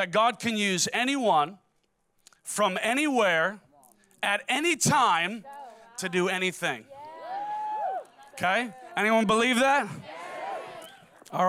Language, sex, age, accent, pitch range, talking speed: English, male, 30-49, American, 185-260 Hz, 95 wpm